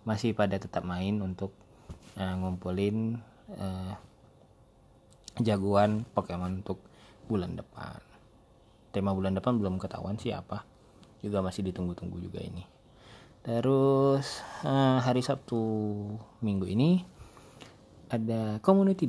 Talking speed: 100 wpm